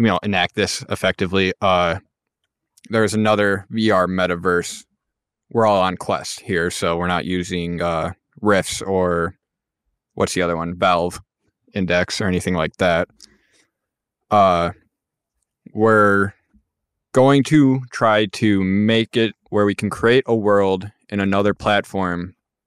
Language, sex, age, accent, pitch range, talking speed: English, male, 20-39, American, 90-105 Hz, 130 wpm